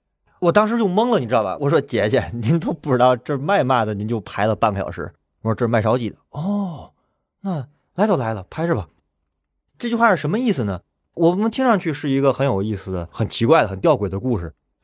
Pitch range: 95-140 Hz